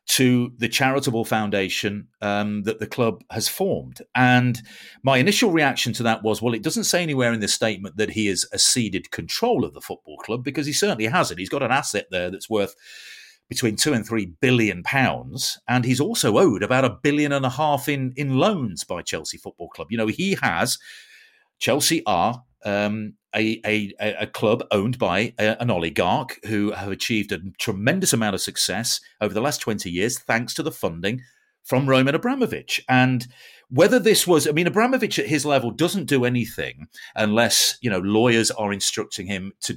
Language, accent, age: English, British, 40-59